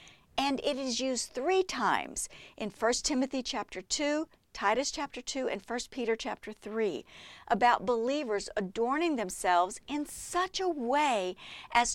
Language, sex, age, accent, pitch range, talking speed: English, female, 50-69, American, 210-280 Hz, 140 wpm